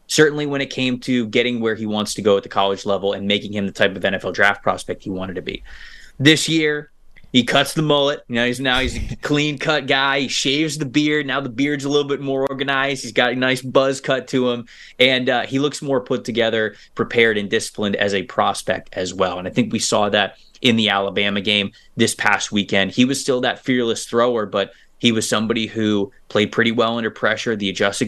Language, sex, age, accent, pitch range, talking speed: English, male, 20-39, American, 105-135 Hz, 225 wpm